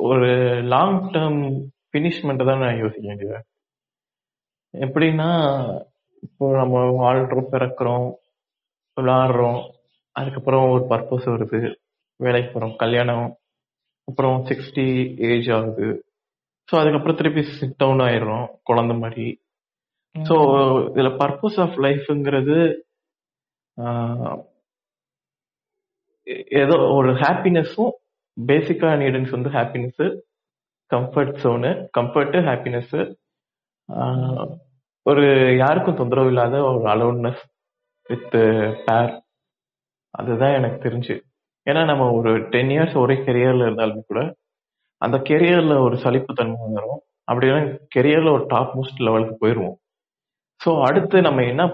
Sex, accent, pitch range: male, native, 120-150 Hz